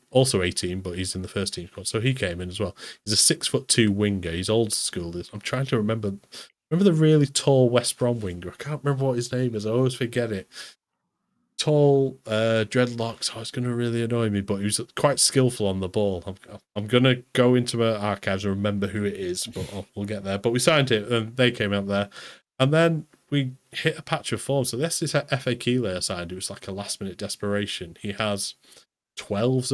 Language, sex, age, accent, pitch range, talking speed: English, male, 30-49, British, 100-130 Hz, 230 wpm